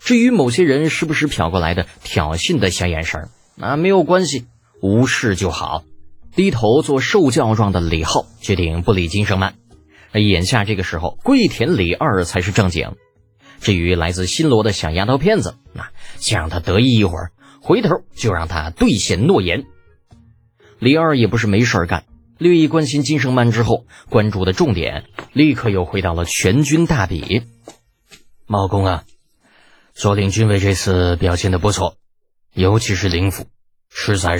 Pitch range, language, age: 90-115 Hz, Chinese, 20-39